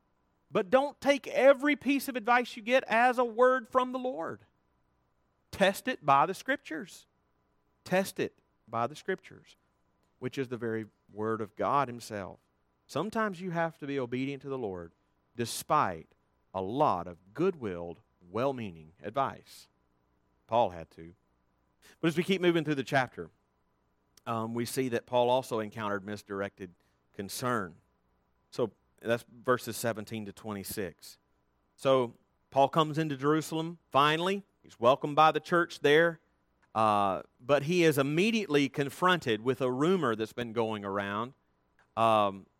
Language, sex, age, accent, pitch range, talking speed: English, male, 40-59, American, 100-150 Hz, 140 wpm